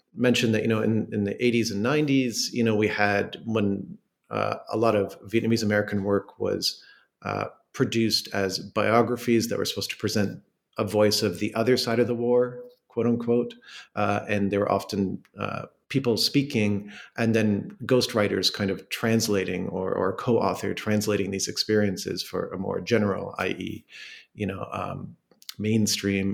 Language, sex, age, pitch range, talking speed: English, male, 40-59, 100-120 Hz, 165 wpm